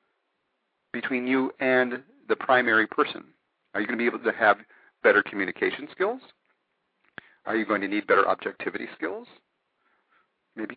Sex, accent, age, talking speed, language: male, American, 40-59, 145 wpm, English